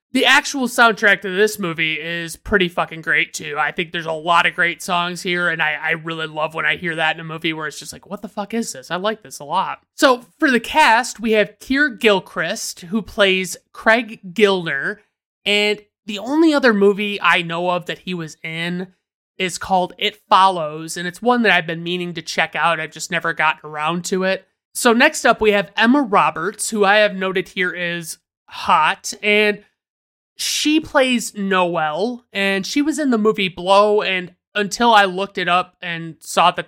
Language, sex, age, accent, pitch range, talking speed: English, male, 30-49, American, 165-210 Hz, 205 wpm